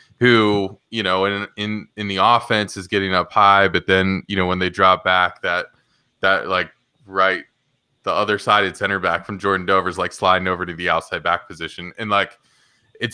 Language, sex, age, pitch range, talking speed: English, male, 20-39, 90-105 Hz, 195 wpm